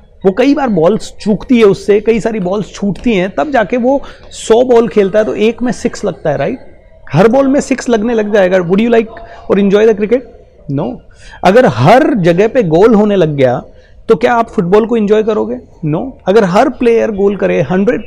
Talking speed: 215 wpm